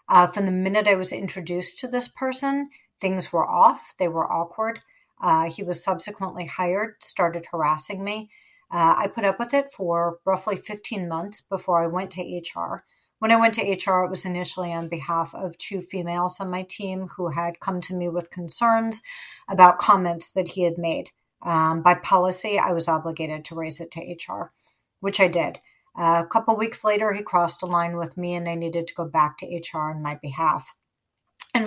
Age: 50-69